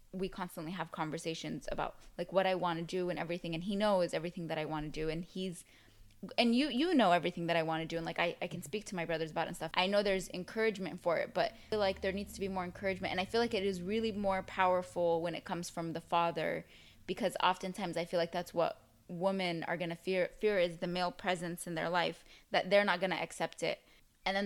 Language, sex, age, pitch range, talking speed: English, female, 10-29, 175-205 Hz, 255 wpm